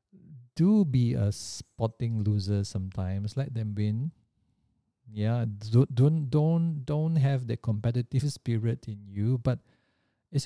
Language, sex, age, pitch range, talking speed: English, male, 50-69, 115-150 Hz, 125 wpm